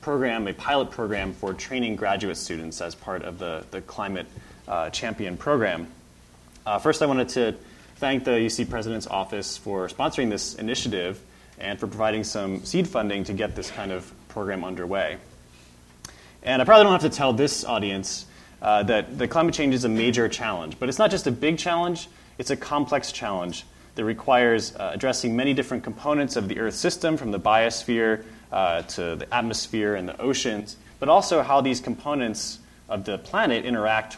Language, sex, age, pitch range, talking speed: English, male, 20-39, 95-130 Hz, 180 wpm